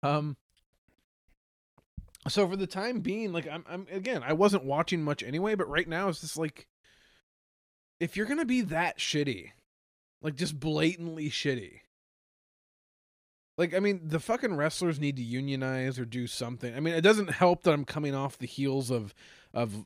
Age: 20-39